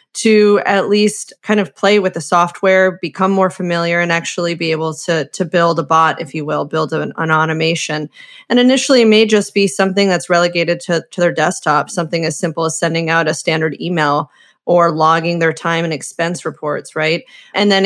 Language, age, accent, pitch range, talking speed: English, 30-49, American, 165-195 Hz, 200 wpm